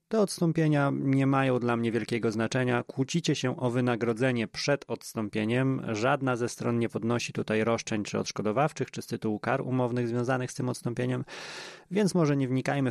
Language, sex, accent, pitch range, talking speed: Polish, male, native, 110-145 Hz, 165 wpm